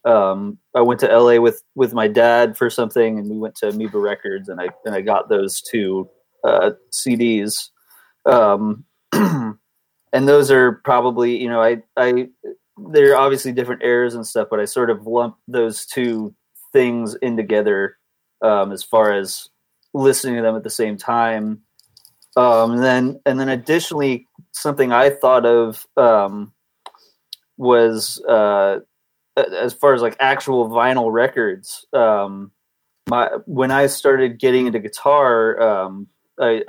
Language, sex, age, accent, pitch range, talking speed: English, male, 30-49, American, 110-130 Hz, 150 wpm